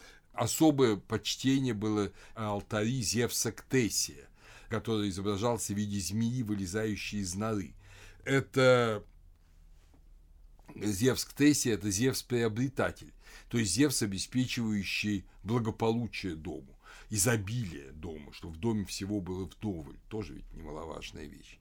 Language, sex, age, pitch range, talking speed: Russian, male, 60-79, 90-115 Hz, 105 wpm